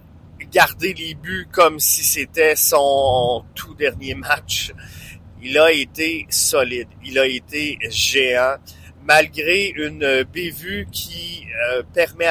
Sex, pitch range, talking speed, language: male, 115-155 Hz, 110 wpm, French